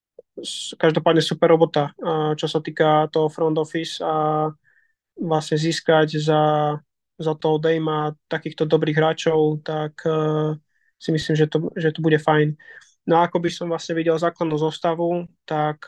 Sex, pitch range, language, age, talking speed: male, 150-165 Hz, Slovak, 20-39, 145 wpm